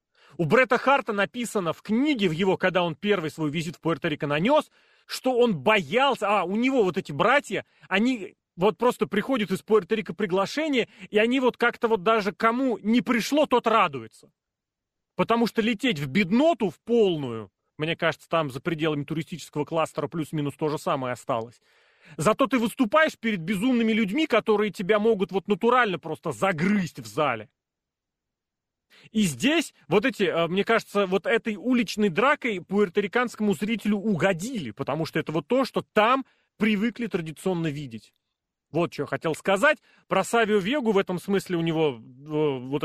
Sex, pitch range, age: male, 160-230 Hz, 30-49